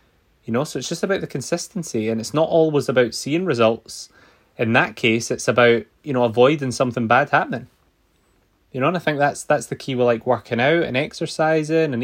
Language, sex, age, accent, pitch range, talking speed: English, male, 20-39, British, 115-140 Hz, 210 wpm